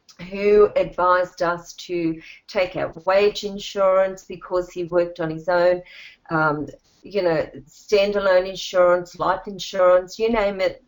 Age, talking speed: 40-59, 130 wpm